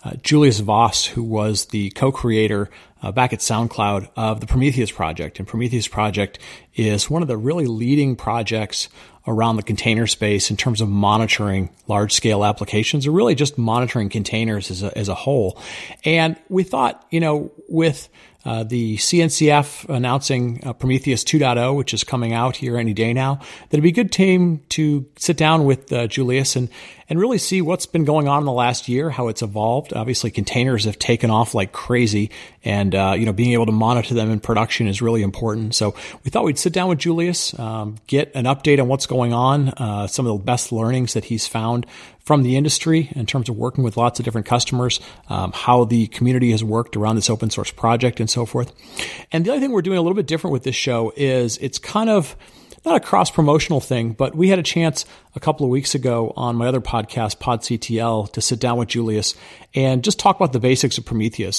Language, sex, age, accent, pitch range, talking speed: English, male, 40-59, American, 110-140 Hz, 210 wpm